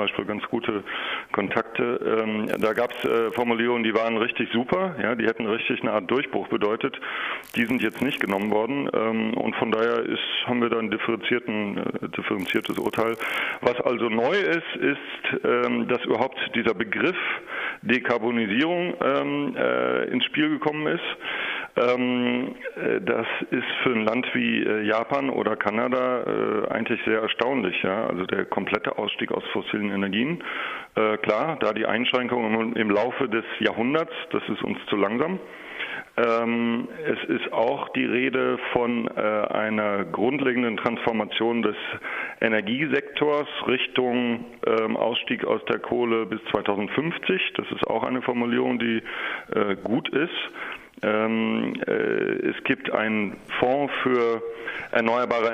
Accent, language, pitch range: German, German, 110-125 Hz